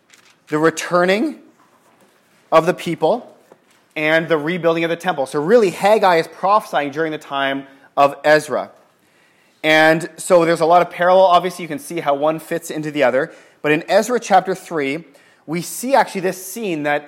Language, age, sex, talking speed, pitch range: English, 30-49, male, 170 wpm, 145-185 Hz